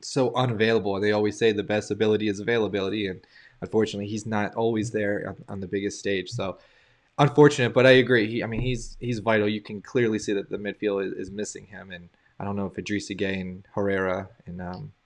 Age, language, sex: 20-39, English, male